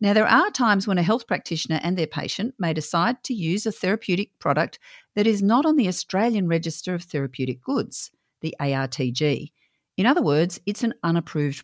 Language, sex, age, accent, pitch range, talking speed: English, female, 50-69, Australian, 150-230 Hz, 185 wpm